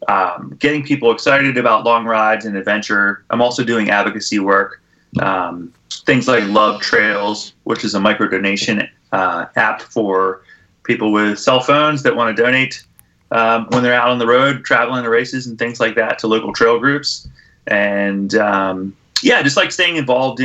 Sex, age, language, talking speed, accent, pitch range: male, 30-49, English, 175 wpm, American, 100-125 Hz